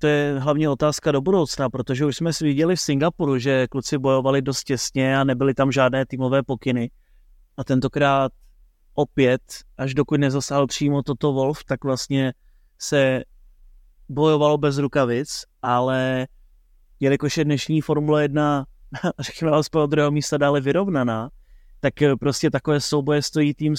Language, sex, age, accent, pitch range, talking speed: Czech, male, 30-49, native, 135-155 Hz, 145 wpm